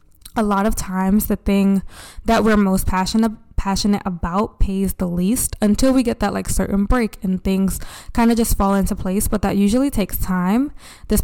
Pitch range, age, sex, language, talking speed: 190-220 Hz, 20-39, female, English, 190 wpm